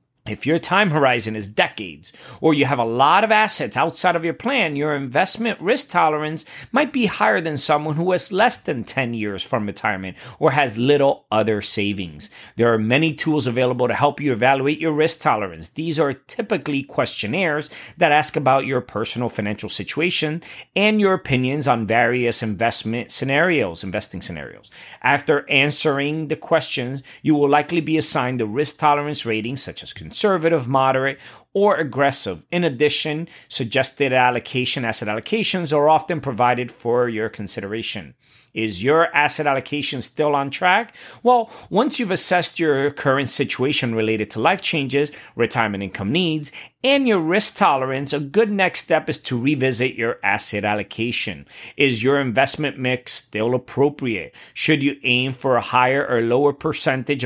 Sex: male